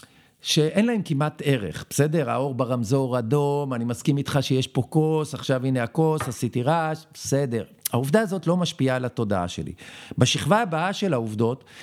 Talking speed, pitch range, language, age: 155 wpm, 135-190 Hz, Hebrew, 50-69